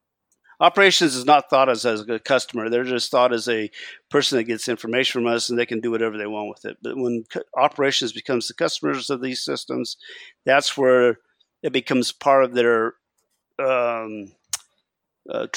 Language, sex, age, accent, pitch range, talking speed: English, male, 50-69, American, 115-135 Hz, 175 wpm